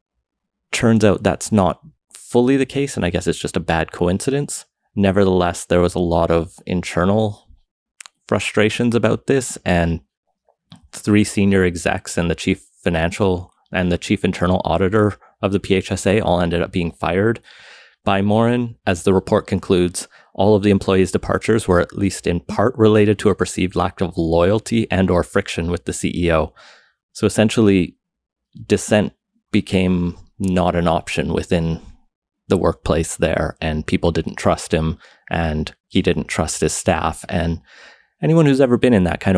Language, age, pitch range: English, 30-49, 85-105 Hz